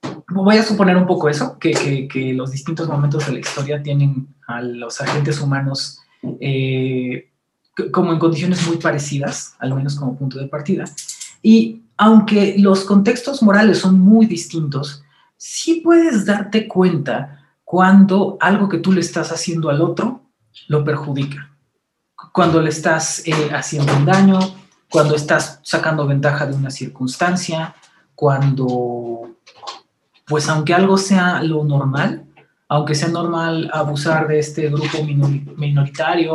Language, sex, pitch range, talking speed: Spanish, male, 140-170 Hz, 140 wpm